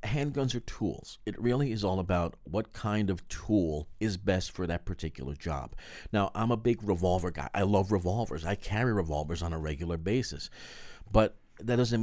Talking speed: 185 wpm